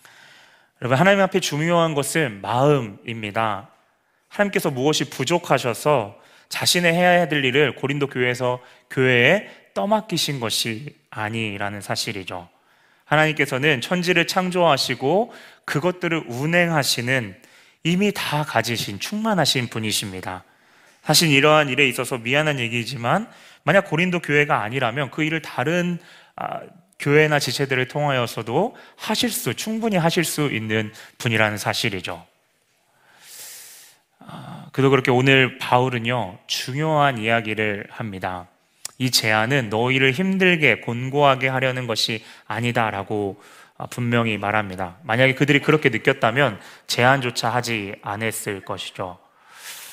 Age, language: 30-49, Korean